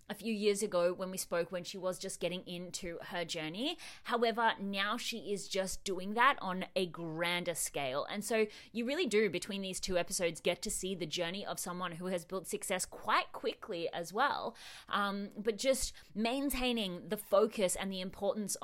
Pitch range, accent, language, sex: 175-220 Hz, Australian, English, female